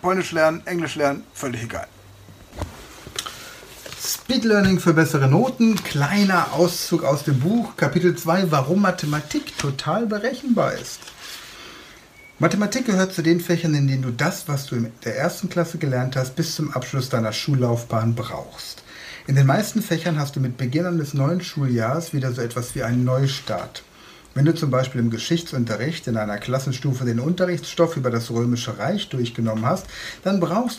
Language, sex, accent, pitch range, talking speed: German, male, German, 125-175 Hz, 160 wpm